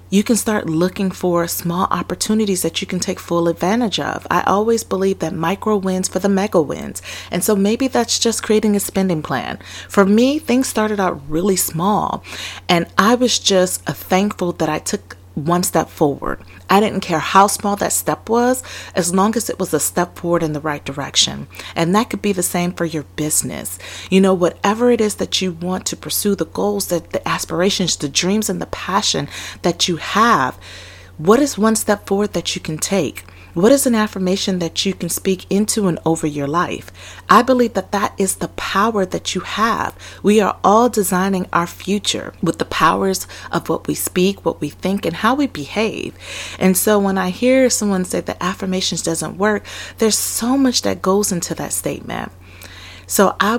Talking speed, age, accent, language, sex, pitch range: 195 wpm, 30-49, American, English, female, 170-210 Hz